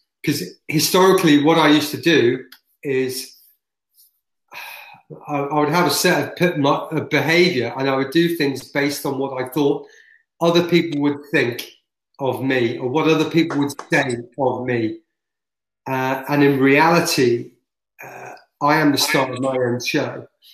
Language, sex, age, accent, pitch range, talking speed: English, male, 30-49, British, 135-165 Hz, 150 wpm